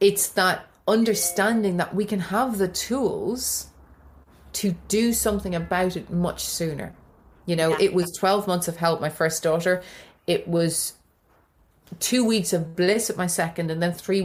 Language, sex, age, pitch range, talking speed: English, female, 30-49, 155-185 Hz, 165 wpm